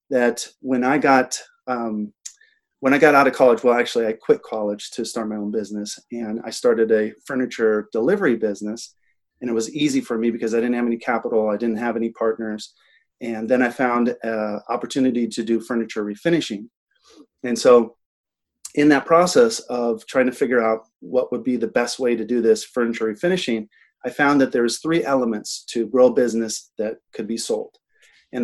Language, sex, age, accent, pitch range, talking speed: English, male, 30-49, American, 115-140 Hz, 195 wpm